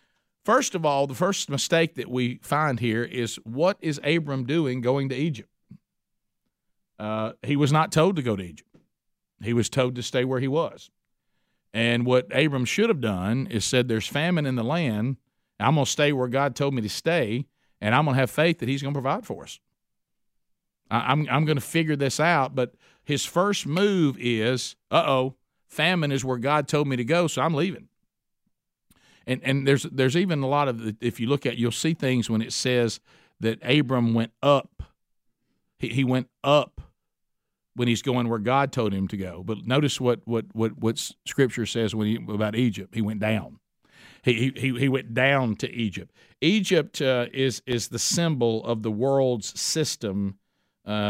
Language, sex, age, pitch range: English, male, 50-69, 115-145 Hz